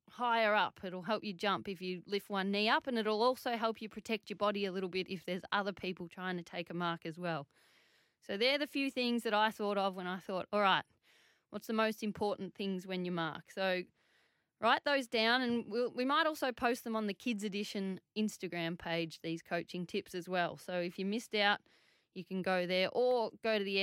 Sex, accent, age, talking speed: female, Australian, 20-39, 230 wpm